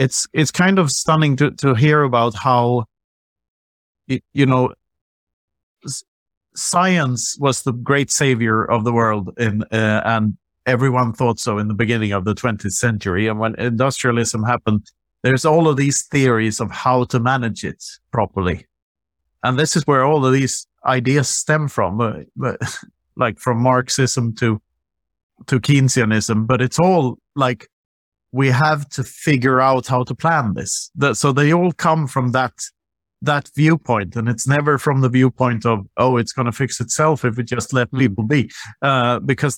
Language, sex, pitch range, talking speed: English, male, 115-145 Hz, 160 wpm